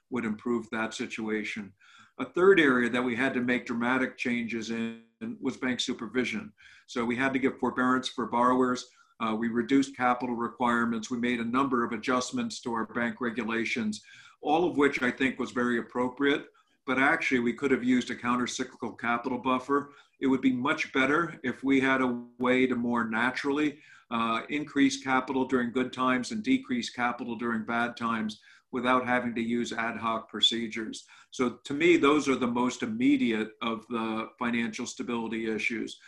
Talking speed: 175 wpm